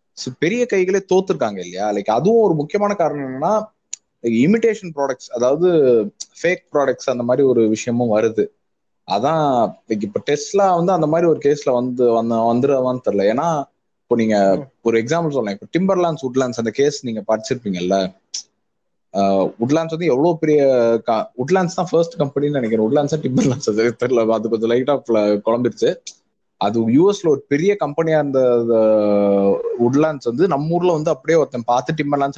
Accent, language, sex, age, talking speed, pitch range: native, Tamil, male, 20-39, 120 wpm, 120-165 Hz